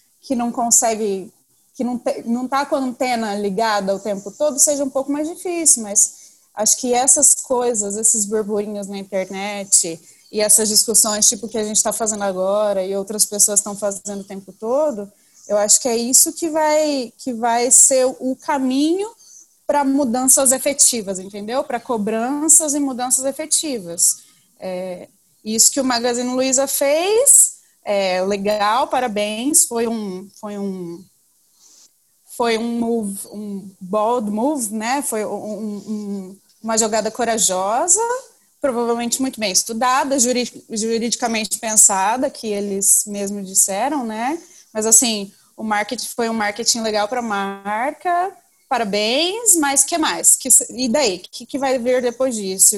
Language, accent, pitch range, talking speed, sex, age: Portuguese, Brazilian, 205-265 Hz, 150 wpm, female, 20-39